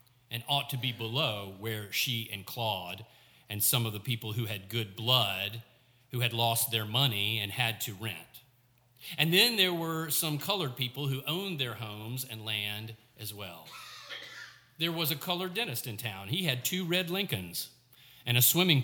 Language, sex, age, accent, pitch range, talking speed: English, male, 40-59, American, 115-150 Hz, 180 wpm